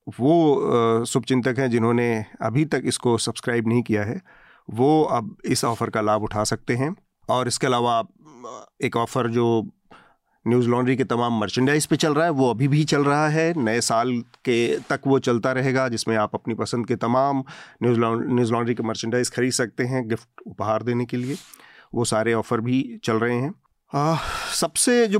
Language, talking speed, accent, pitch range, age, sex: Hindi, 180 wpm, native, 115-140 Hz, 40-59, male